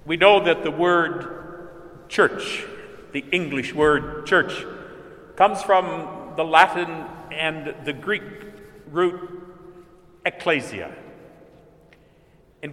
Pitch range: 155-185 Hz